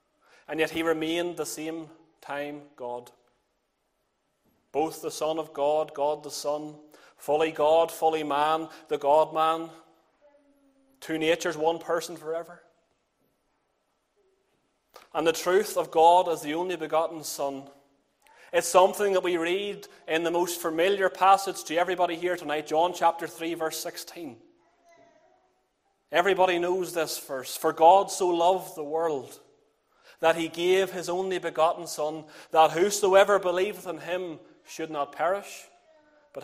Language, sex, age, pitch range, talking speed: English, male, 30-49, 155-190 Hz, 135 wpm